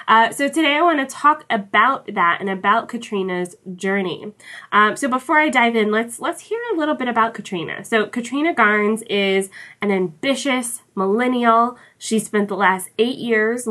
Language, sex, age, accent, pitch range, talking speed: English, female, 20-39, American, 185-235 Hz, 175 wpm